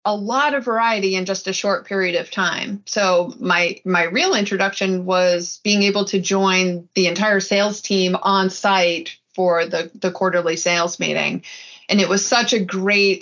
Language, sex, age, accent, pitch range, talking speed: English, female, 30-49, American, 185-235 Hz, 175 wpm